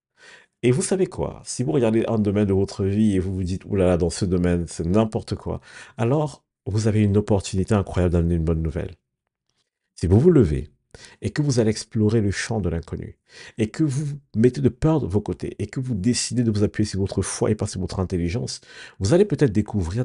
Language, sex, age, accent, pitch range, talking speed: French, male, 50-69, French, 85-110 Hz, 220 wpm